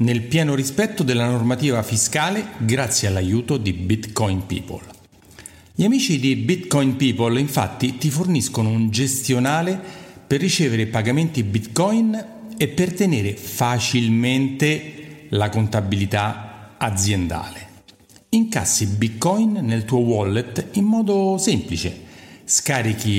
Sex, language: male, Italian